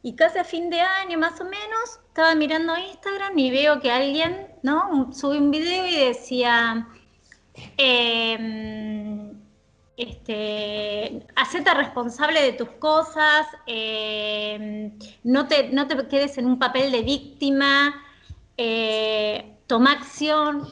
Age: 20-39